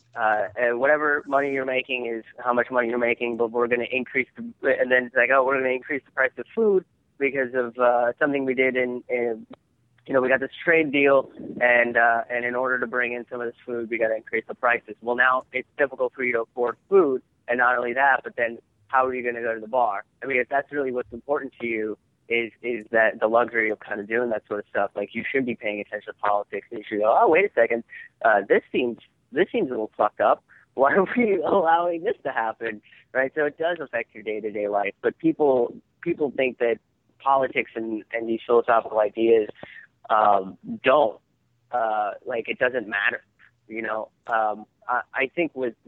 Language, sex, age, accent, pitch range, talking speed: English, male, 20-39, American, 115-135 Hz, 230 wpm